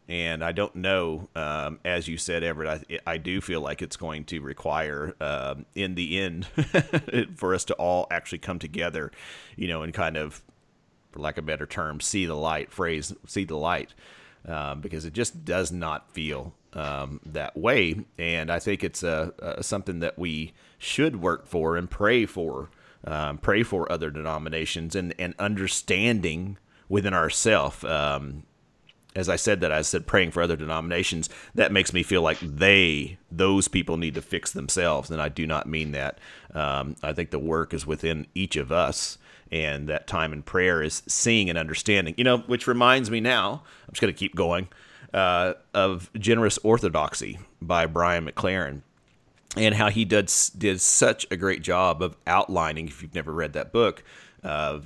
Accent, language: American, English